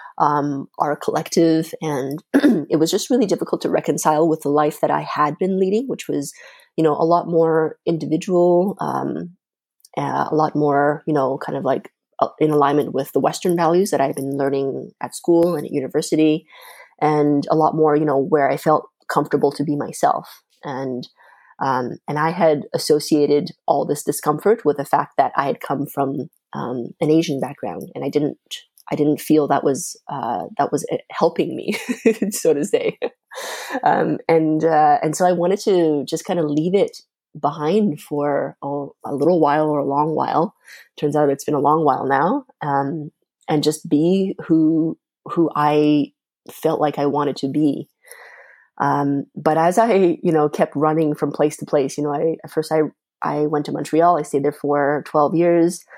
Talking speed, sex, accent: 185 wpm, female, American